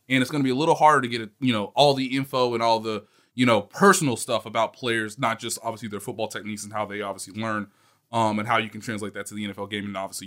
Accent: American